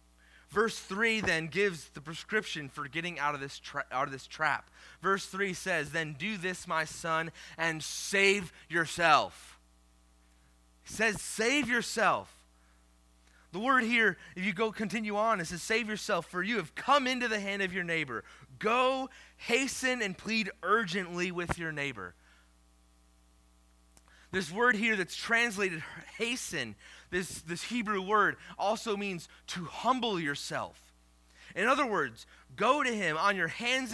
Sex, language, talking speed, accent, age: male, English, 150 wpm, American, 20-39